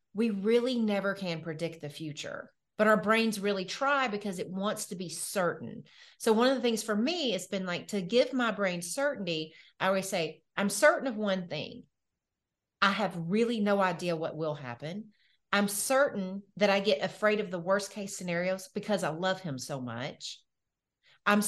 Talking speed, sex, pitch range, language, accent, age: 185 wpm, female, 170-220 Hz, English, American, 30-49